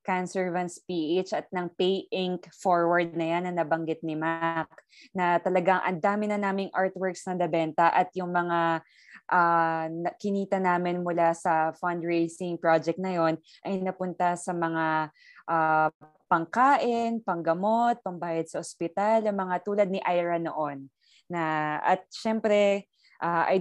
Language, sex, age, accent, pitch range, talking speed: Filipino, female, 20-39, native, 170-205 Hz, 135 wpm